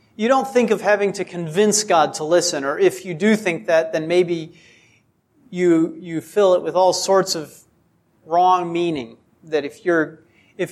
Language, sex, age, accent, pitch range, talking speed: English, male, 40-59, American, 160-205 Hz, 180 wpm